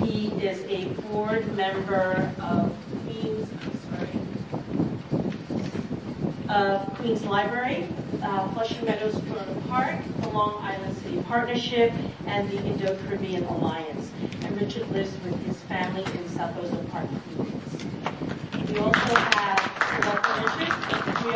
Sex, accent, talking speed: female, American, 110 wpm